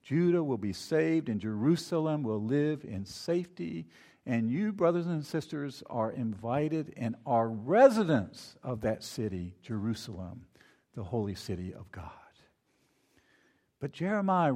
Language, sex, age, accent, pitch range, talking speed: English, male, 50-69, American, 110-145 Hz, 130 wpm